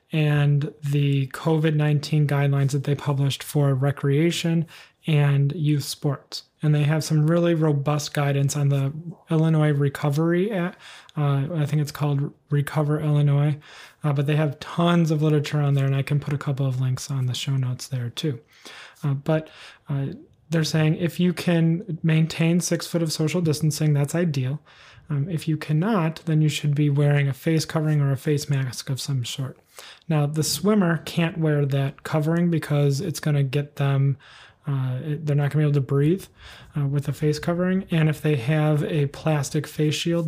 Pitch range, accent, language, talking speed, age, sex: 140-160 Hz, American, English, 185 wpm, 30-49, male